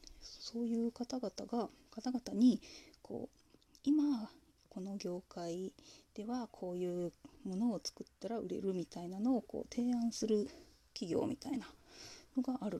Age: 20-39